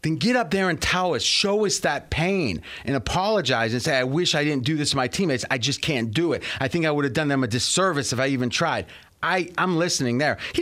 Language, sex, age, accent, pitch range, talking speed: English, male, 30-49, American, 130-180 Hz, 260 wpm